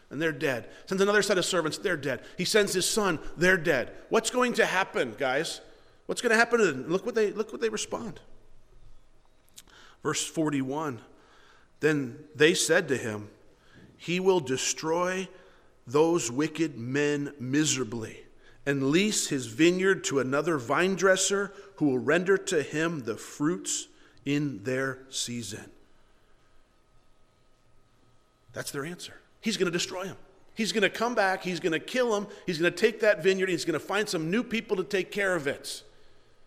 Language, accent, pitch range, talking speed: English, American, 130-200 Hz, 170 wpm